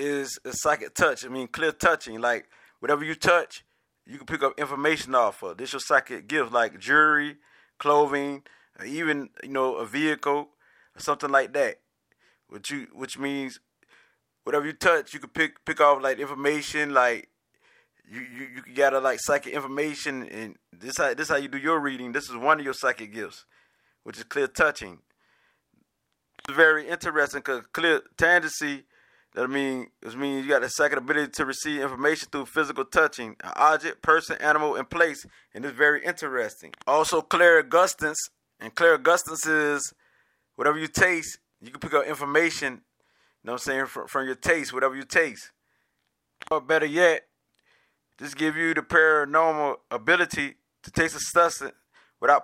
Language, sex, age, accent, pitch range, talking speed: English, male, 20-39, American, 135-160 Hz, 175 wpm